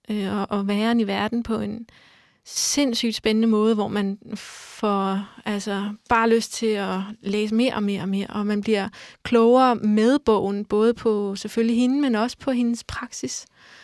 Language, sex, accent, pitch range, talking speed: Danish, female, native, 210-240 Hz, 165 wpm